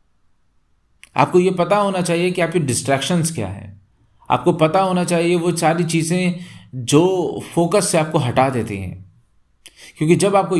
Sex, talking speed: male, 155 wpm